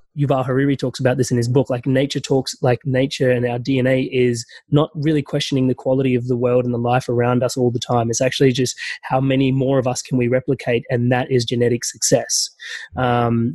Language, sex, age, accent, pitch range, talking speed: English, male, 20-39, Australian, 125-140 Hz, 220 wpm